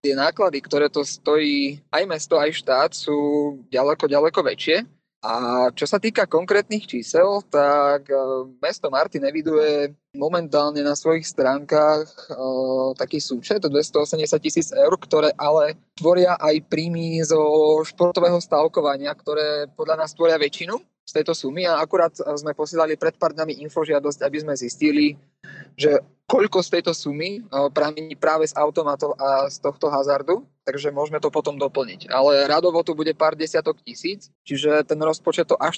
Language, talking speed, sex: Slovak, 150 wpm, male